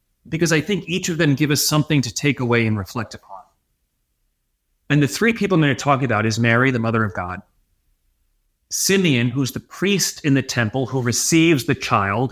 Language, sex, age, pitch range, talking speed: English, male, 30-49, 110-170 Hz, 200 wpm